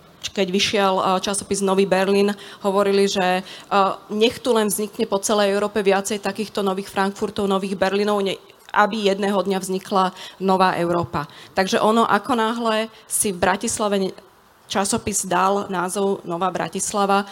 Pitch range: 185-205 Hz